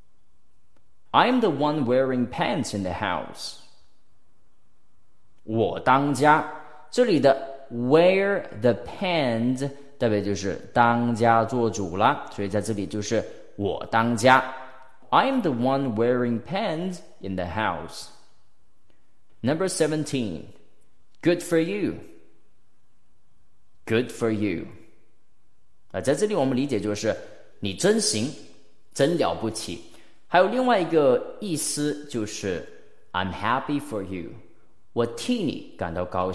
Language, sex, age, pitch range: Chinese, male, 30-49, 95-145 Hz